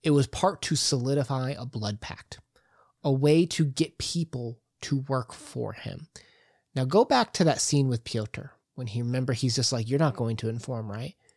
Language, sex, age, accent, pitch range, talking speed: English, male, 20-39, American, 120-155 Hz, 195 wpm